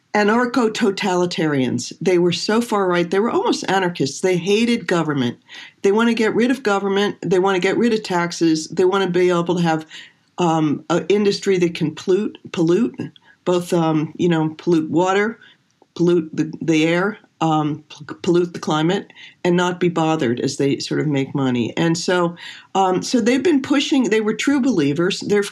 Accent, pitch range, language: American, 160-200 Hz, English